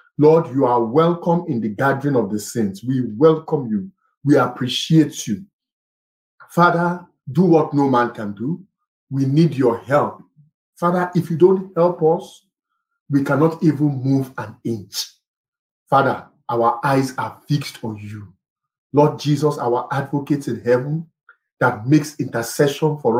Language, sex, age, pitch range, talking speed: English, male, 50-69, 130-165 Hz, 145 wpm